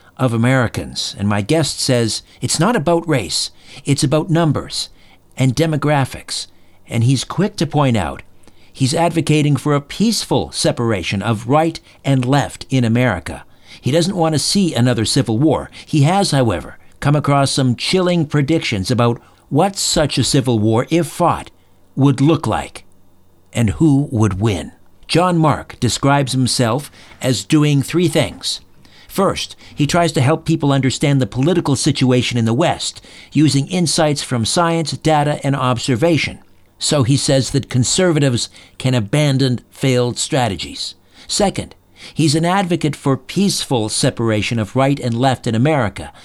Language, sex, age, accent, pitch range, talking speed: English, male, 60-79, American, 115-155 Hz, 150 wpm